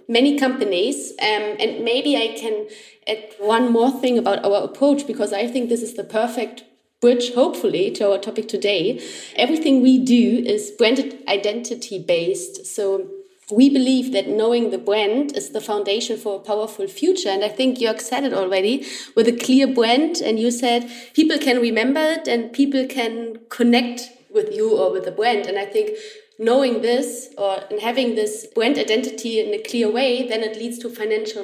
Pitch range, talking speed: 215-265 Hz, 180 wpm